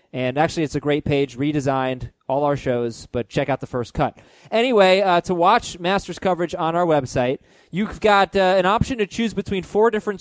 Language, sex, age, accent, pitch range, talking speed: English, male, 20-39, American, 145-190 Hz, 205 wpm